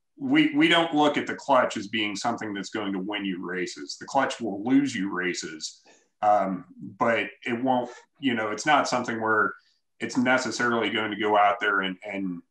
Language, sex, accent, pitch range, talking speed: English, male, American, 105-125 Hz, 195 wpm